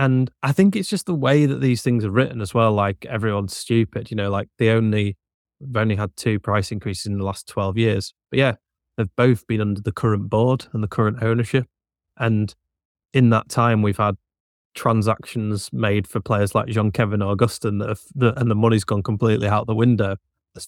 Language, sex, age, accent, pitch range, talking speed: English, male, 20-39, British, 100-125 Hz, 205 wpm